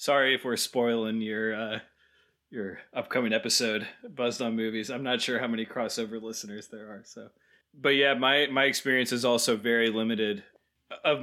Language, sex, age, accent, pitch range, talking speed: English, male, 20-39, American, 110-130 Hz, 170 wpm